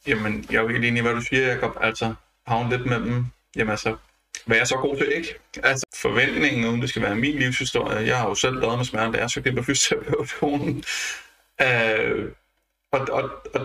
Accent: native